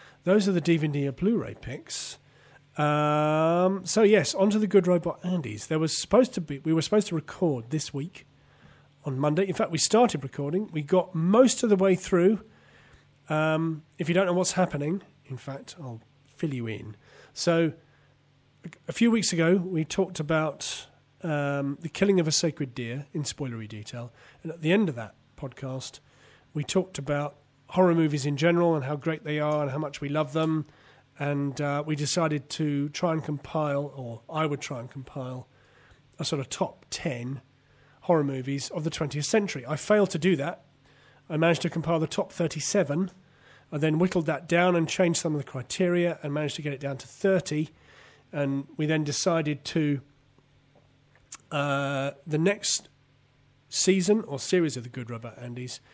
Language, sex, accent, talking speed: English, male, British, 185 wpm